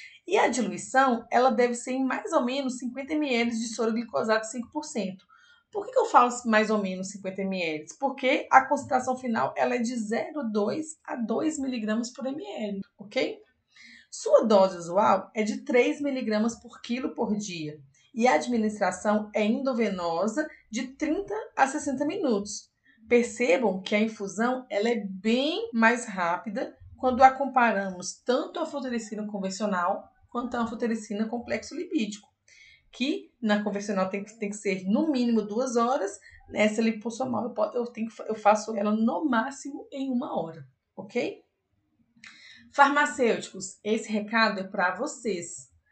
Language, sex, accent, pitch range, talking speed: Portuguese, female, Brazilian, 210-265 Hz, 150 wpm